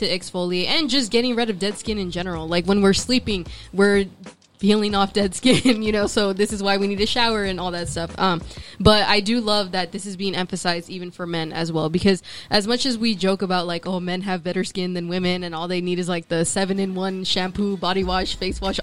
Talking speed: 250 wpm